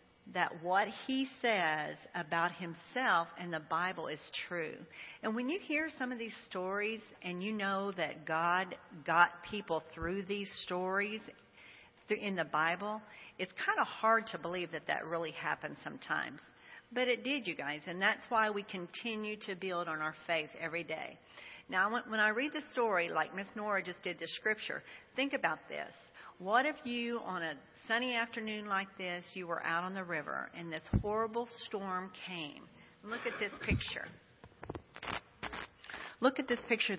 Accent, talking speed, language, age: American, 170 wpm, English, 50-69